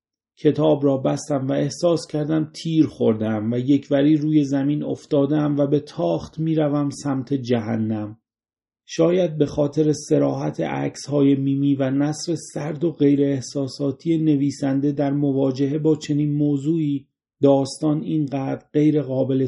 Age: 40-59